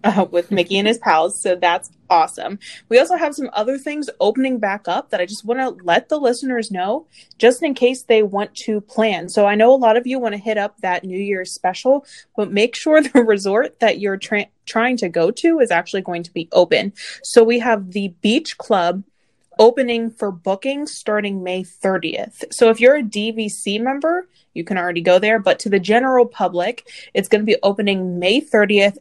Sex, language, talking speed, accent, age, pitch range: female, English, 210 wpm, American, 20-39, 190-245 Hz